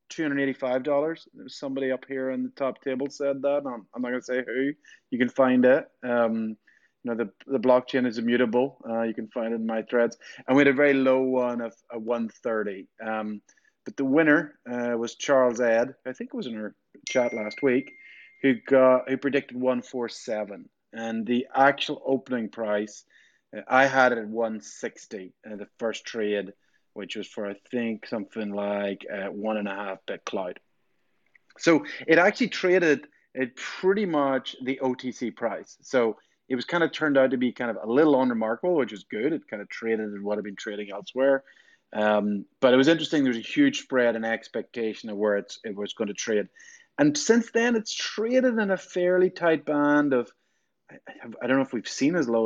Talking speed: 205 wpm